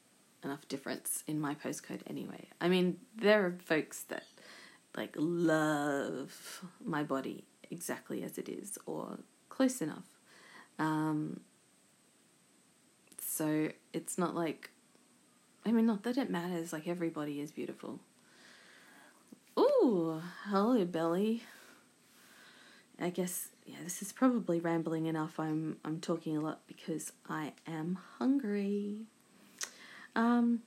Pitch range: 165-225 Hz